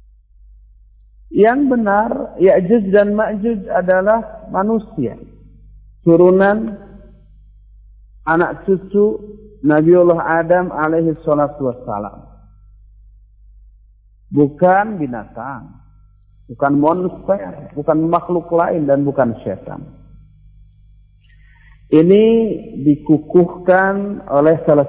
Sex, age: male, 50-69